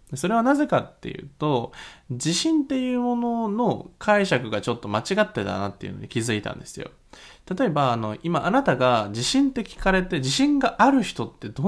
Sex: male